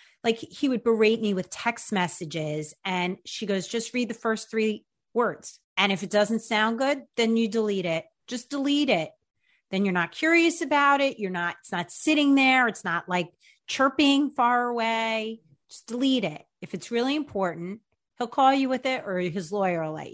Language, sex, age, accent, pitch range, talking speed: English, female, 30-49, American, 190-245 Hz, 195 wpm